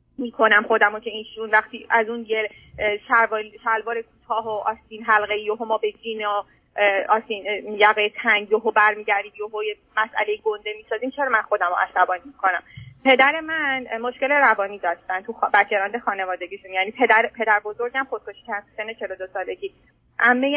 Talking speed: 145 wpm